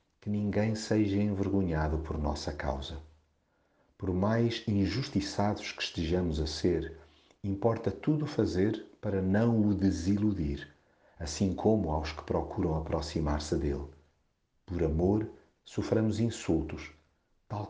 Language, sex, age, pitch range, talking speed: Portuguese, male, 50-69, 80-105 Hz, 110 wpm